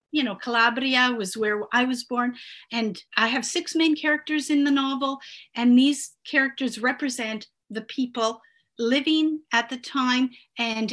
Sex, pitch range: female, 225-275 Hz